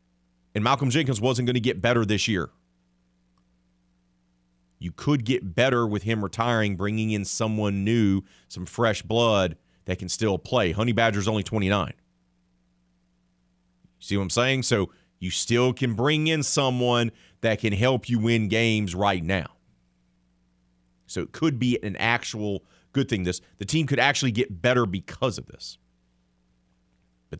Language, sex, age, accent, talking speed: English, male, 30-49, American, 155 wpm